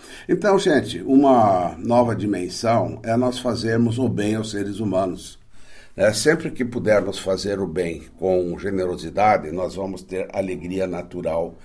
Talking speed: 135 wpm